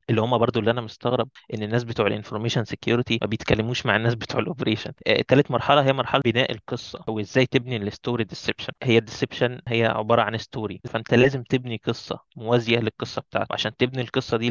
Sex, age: male, 20-39